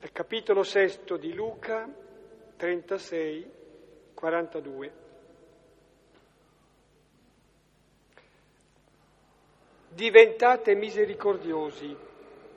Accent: native